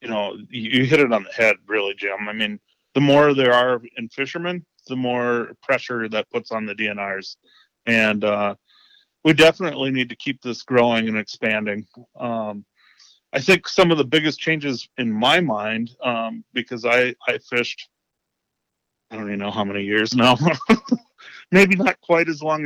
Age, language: 30-49, English